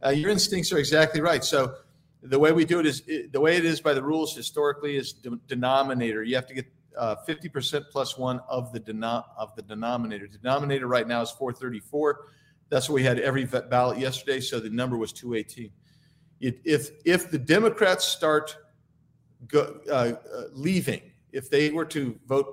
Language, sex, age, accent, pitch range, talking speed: English, male, 50-69, American, 125-155 Hz, 195 wpm